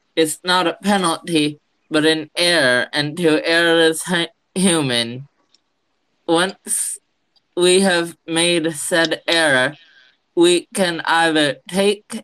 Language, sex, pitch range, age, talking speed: English, male, 155-190 Hz, 20-39, 115 wpm